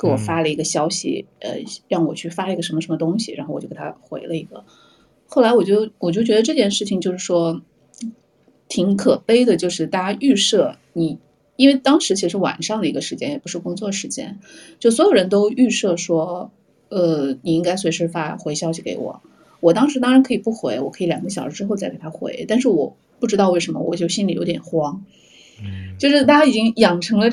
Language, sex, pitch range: Chinese, female, 165-230 Hz